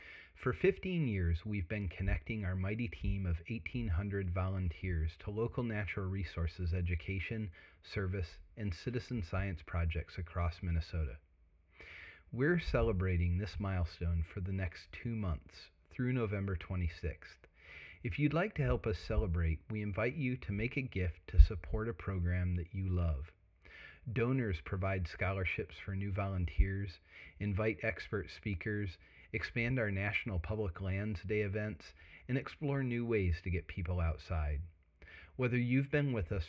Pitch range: 85-110 Hz